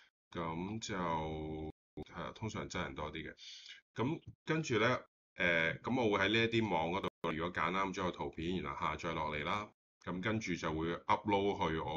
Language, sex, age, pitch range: Chinese, male, 20-39, 80-105 Hz